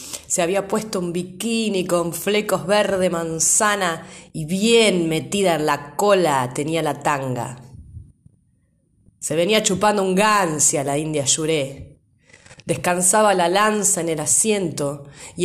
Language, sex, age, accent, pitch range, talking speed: Spanish, female, 20-39, Argentinian, 140-180 Hz, 130 wpm